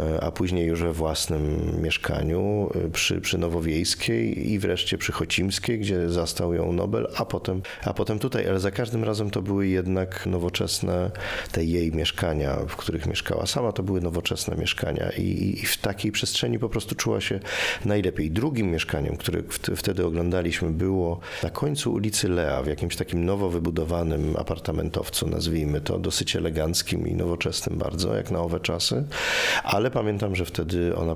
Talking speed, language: 160 wpm, Polish